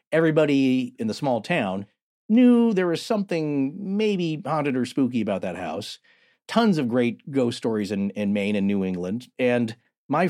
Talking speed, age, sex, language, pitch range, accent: 170 wpm, 40-59, male, English, 115-165 Hz, American